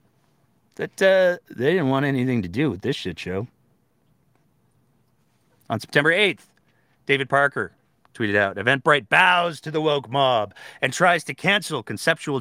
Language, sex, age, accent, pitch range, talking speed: English, male, 40-59, American, 110-165 Hz, 145 wpm